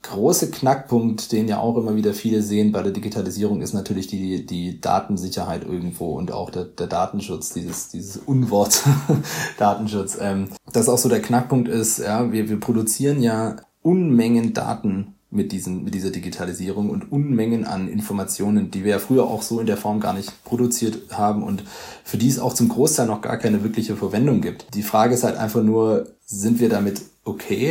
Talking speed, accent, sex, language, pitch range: 180 wpm, German, male, German, 105-120 Hz